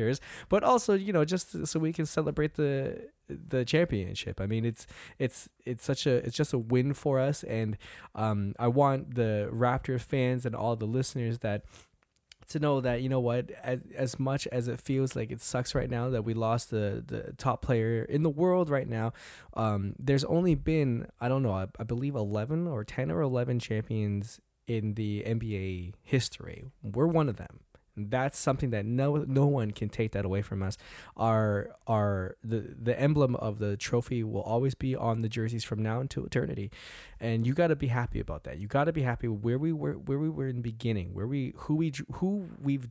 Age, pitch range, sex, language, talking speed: 10-29, 110-140 Hz, male, English, 205 wpm